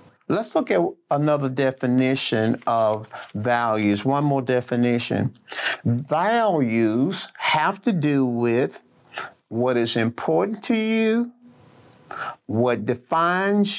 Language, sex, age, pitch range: English, male, 50-69, 125-185 Hz